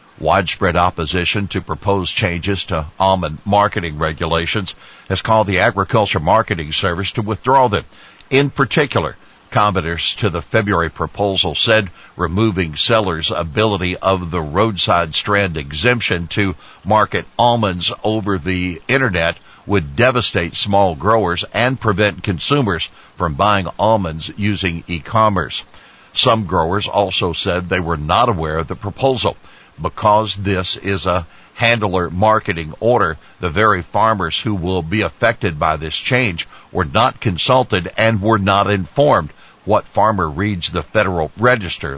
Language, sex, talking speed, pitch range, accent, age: English, male, 135 wpm, 85-110 Hz, American, 60-79